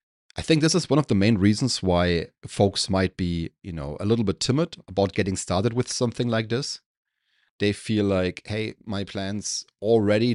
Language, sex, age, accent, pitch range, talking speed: English, male, 30-49, German, 90-110 Hz, 190 wpm